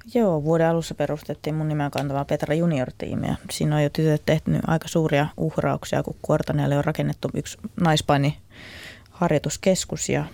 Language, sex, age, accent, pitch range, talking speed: Finnish, female, 20-39, native, 135-155 Hz, 140 wpm